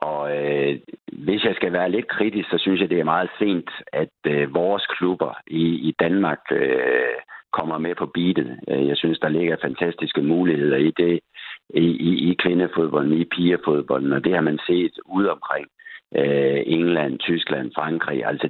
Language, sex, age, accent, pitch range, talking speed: Danish, male, 60-79, native, 75-90 Hz, 160 wpm